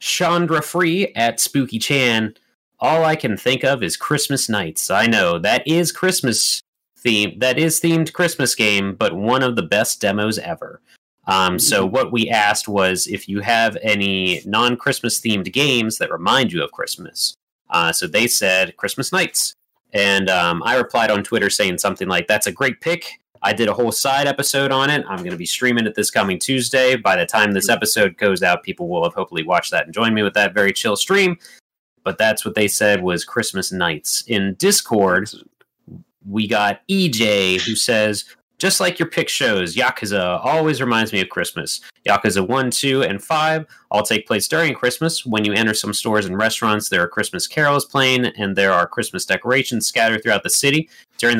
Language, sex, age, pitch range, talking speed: English, male, 30-49, 105-140 Hz, 190 wpm